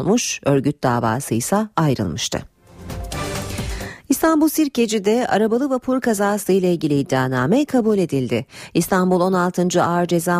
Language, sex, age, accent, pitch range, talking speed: Turkish, female, 40-59, native, 140-200 Hz, 100 wpm